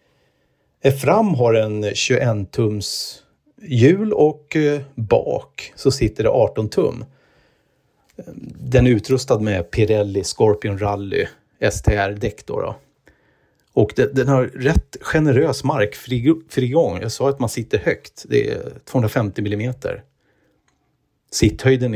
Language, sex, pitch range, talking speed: Swedish, male, 105-135 Hz, 105 wpm